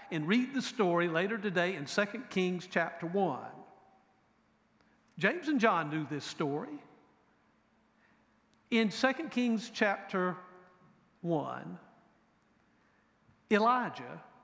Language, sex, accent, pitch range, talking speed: English, male, American, 180-235 Hz, 95 wpm